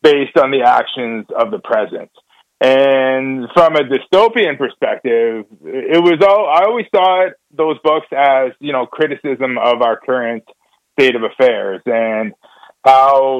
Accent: American